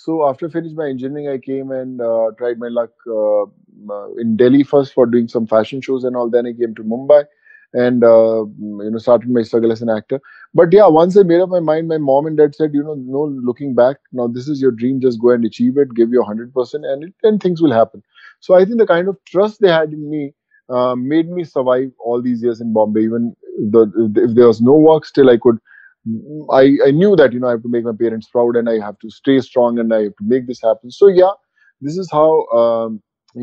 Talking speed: 250 wpm